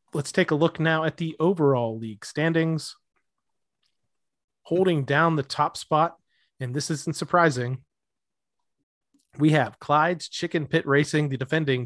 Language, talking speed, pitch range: English, 135 wpm, 125-160 Hz